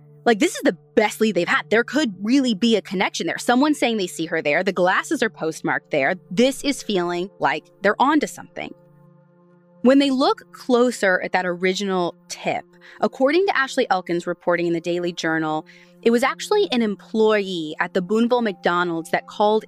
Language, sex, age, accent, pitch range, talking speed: English, female, 20-39, American, 170-235 Hz, 190 wpm